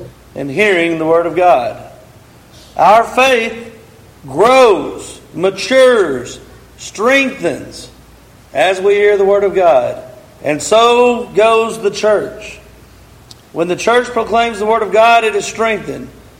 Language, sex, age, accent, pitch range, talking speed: English, male, 40-59, American, 130-210 Hz, 125 wpm